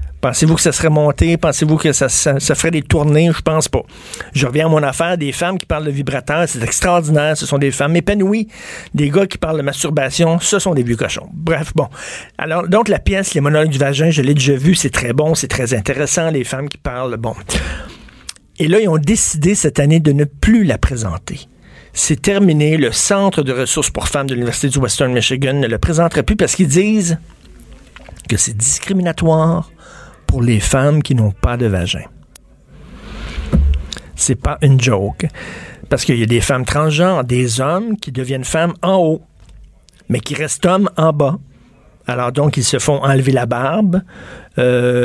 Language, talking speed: French, 195 wpm